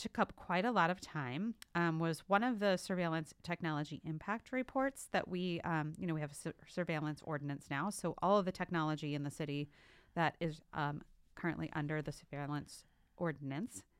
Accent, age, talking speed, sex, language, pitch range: American, 30-49, 185 wpm, female, English, 140-180 Hz